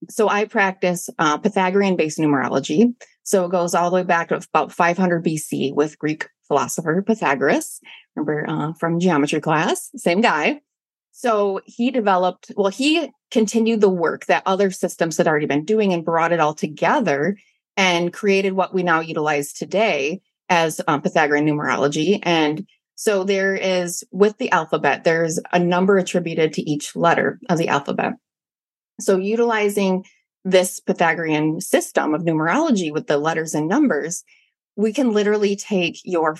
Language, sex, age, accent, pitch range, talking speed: English, female, 30-49, American, 165-200 Hz, 155 wpm